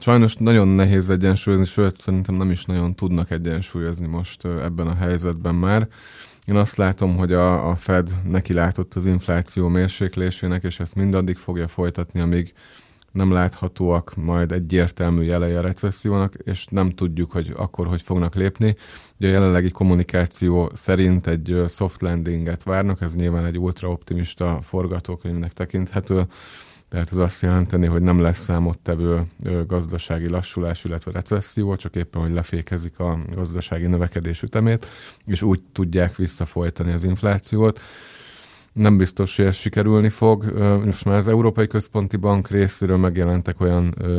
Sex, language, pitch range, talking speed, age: male, Hungarian, 85-95 Hz, 140 wpm, 20-39